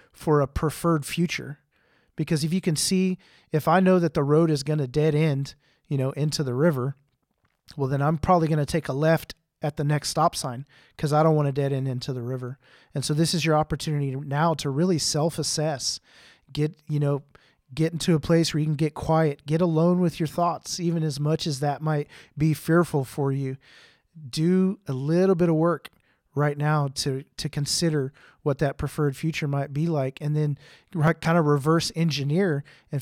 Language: English